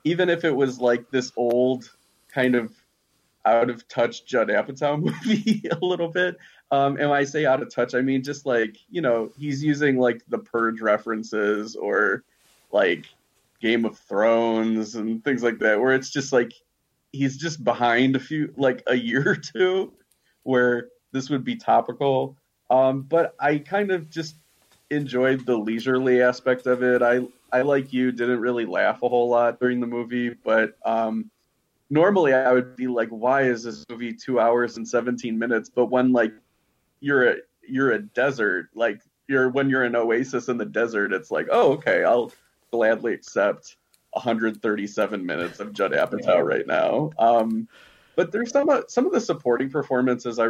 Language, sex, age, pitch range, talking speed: English, male, 30-49, 115-135 Hz, 175 wpm